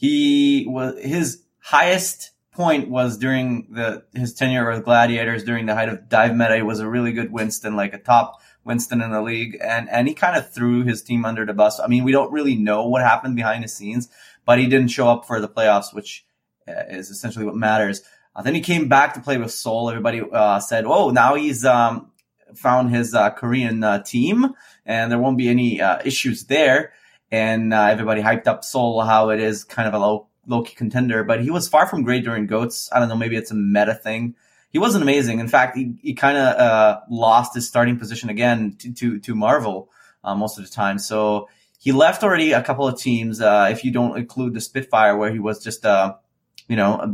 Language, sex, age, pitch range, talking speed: English, male, 20-39, 110-125 Hz, 225 wpm